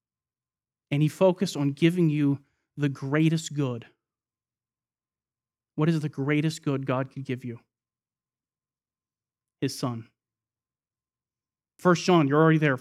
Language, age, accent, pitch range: English, 30-49, American, 135-190 Hz